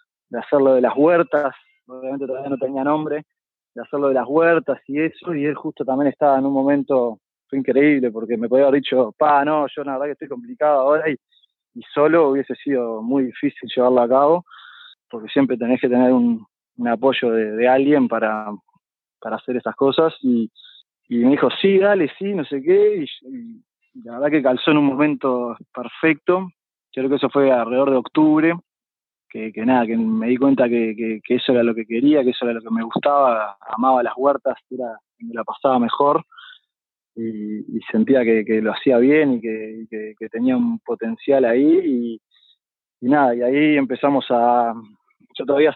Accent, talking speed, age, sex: Argentinian, 195 wpm, 20-39, male